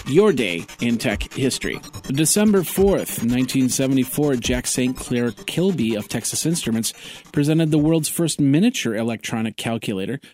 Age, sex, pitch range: 40-59, male, 115-155 Hz